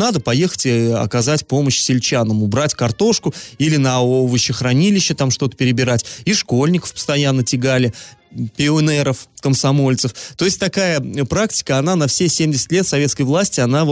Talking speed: 140 wpm